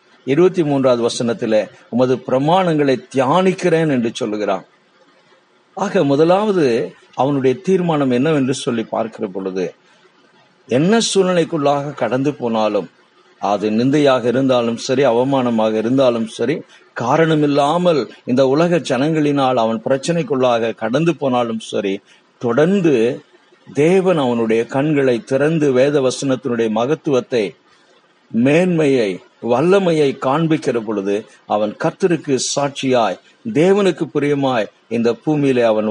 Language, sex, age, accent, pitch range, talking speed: Tamil, male, 50-69, native, 115-155 Hz, 90 wpm